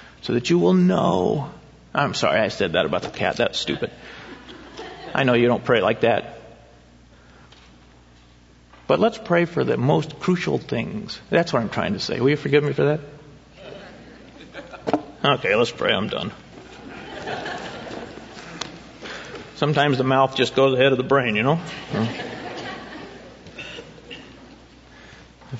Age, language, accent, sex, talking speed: 40-59, English, American, male, 140 wpm